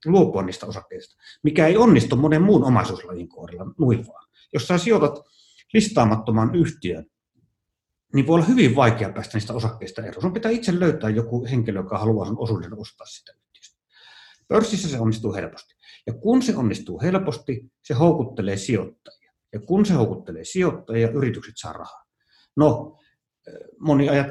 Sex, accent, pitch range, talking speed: male, native, 115-155 Hz, 145 wpm